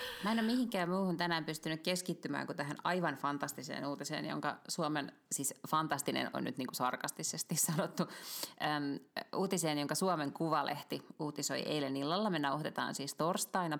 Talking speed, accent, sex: 150 wpm, native, female